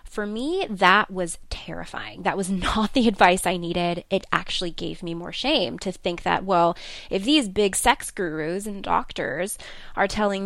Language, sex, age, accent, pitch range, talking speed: English, female, 20-39, American, 175-210 Hz, 180 wpm